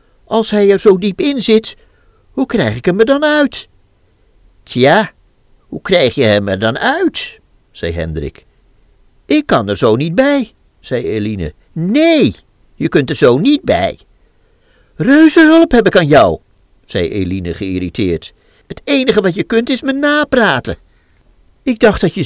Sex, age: male, 50-69